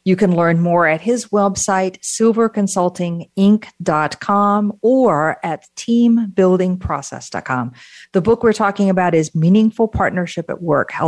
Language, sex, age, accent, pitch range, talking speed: English, female, 50-69, American, 155-200 Hz, 120 wpm